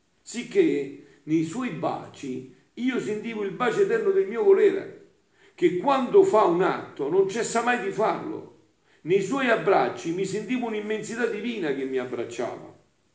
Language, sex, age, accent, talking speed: Italian, male, 50-69, native, 145 wpm